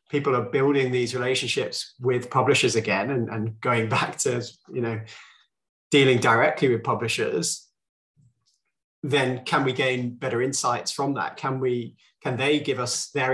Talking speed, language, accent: 155 wpm, English, British